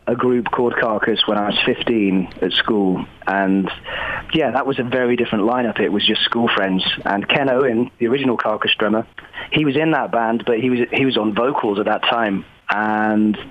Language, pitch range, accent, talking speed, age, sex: Hebrew, 100-120 Hz, British, 210 wpm, 30-49, male